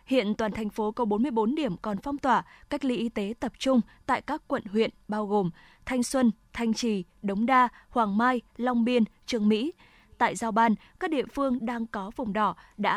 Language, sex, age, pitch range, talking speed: Vietnamese, female, 20-39, 210-255 Hz, 210 wpm